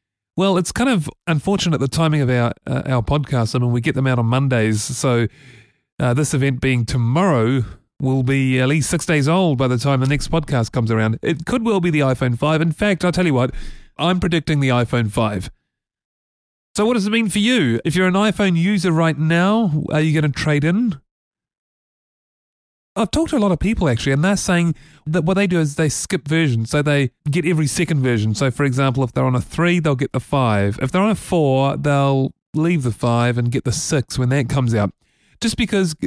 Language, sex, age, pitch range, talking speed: English, male, 30-49, 125-170 Hz, 225 wpm